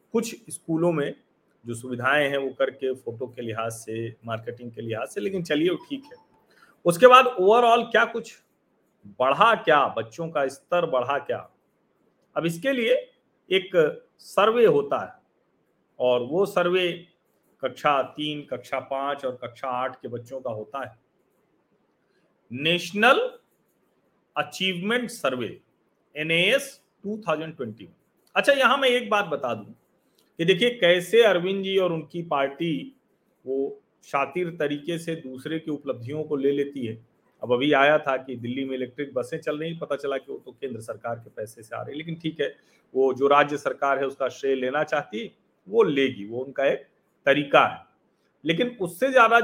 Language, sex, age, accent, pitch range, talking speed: Hindi, male, 40-59, native, 135-215 Hz, 160 wpm